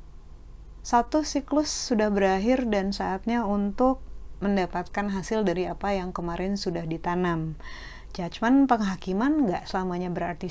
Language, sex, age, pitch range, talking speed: Indonesian, female, 30-49, 175-225 Hz, 115 wpm